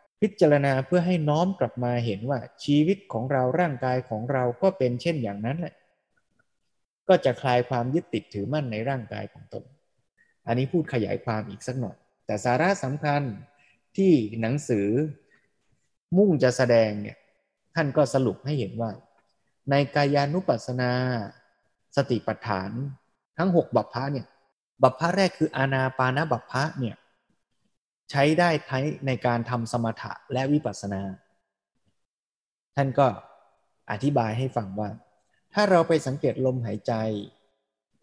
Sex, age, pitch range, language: male, 20-39, 115-145 Hz, Thai